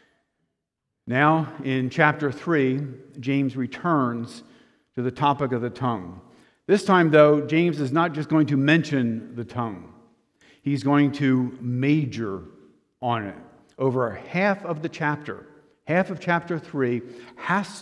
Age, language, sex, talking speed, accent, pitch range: 50-69, English, male, 135 wpm, American, 125-155 Hz